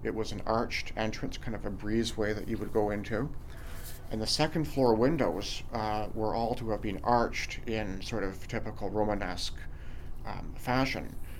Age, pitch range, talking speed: 40-59, 100-115 Hz, 175 wpm